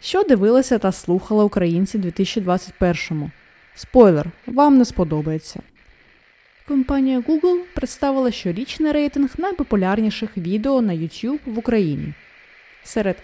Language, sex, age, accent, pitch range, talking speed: Ukrainian, female, 20-39, native, 200-285 Hz, 100 wpm